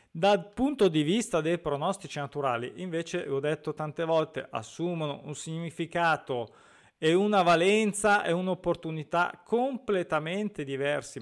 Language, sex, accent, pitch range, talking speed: Italian, male, native, 140-180 Hz, 120 wpm